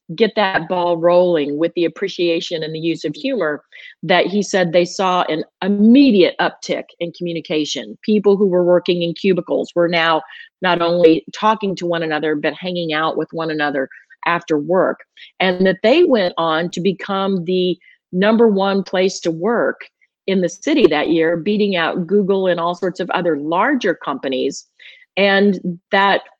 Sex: female